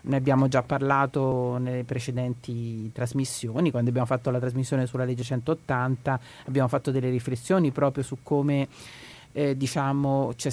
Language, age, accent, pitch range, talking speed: Italian, 40-59, native, 125-140 Hz, 140 wpm